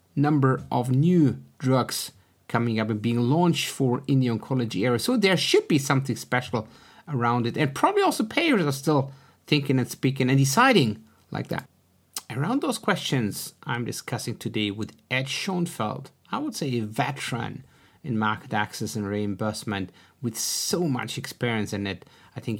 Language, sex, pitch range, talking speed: English, male, 115-155 Hz, 165 wpm